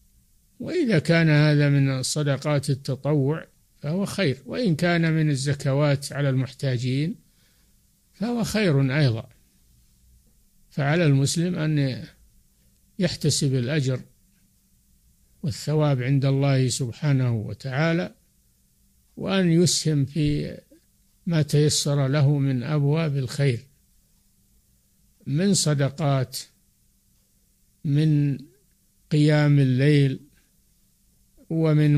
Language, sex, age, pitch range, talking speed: Arabic, male, 60-79, 135-160 Hz, 80 wpm